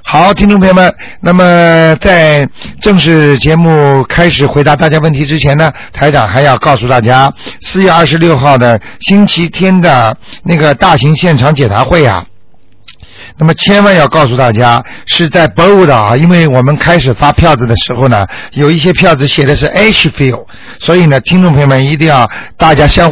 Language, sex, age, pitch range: Chinese, male, 60-79, 130-170 Hz